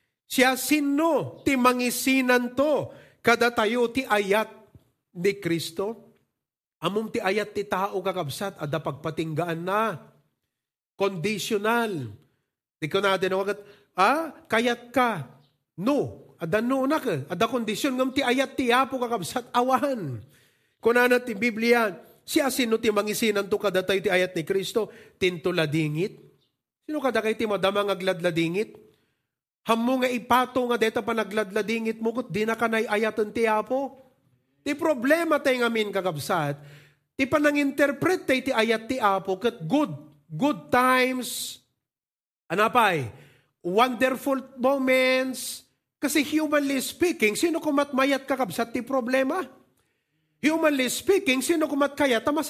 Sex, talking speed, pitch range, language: male, 125 wpm, 200-265 Hz, English